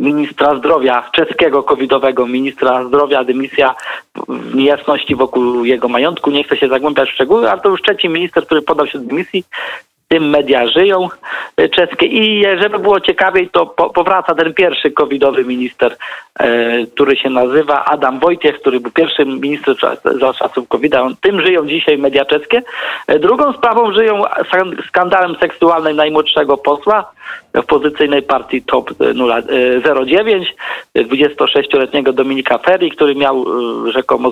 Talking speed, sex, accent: 135 wpm, male, native